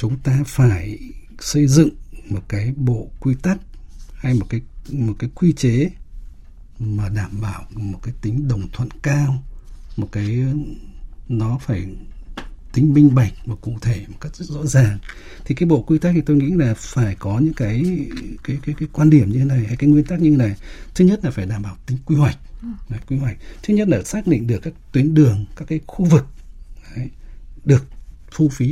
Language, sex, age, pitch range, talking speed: Vietnamese, male, 60-79, 115-155 Hz, 205 wpm